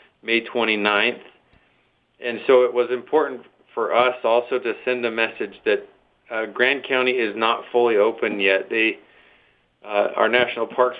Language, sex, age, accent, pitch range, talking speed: English, male, 40-59, American, 100-135 Hz, 155 wpm